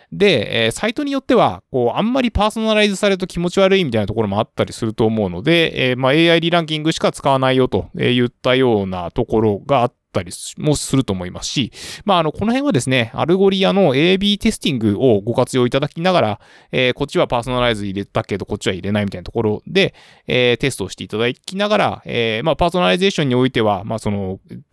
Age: 20-39